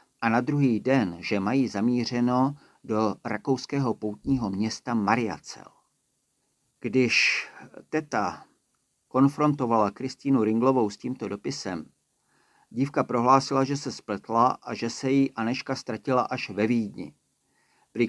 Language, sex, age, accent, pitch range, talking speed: Czech, male, 50-69, native, 120-140 Hz, 115 wpm